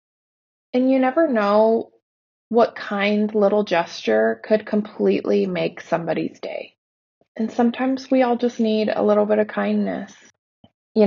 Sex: female